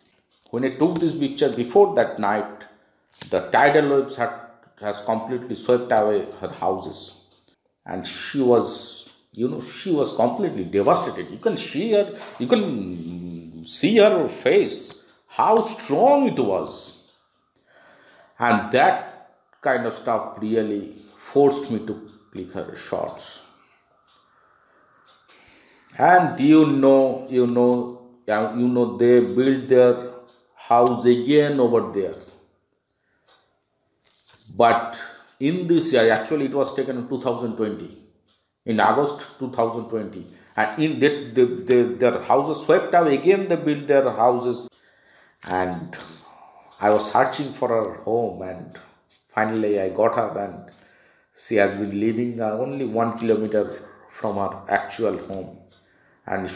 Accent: Indian